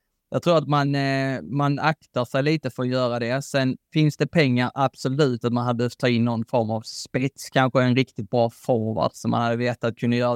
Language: Swedish